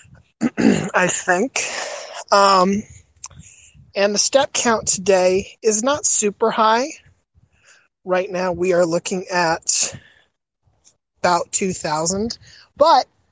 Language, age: English, 30-49